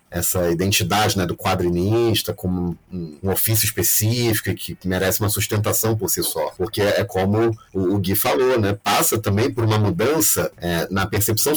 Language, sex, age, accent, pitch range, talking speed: Portuguese, male, 30-49, Brazilian, 90-115 Hz, 170 wpm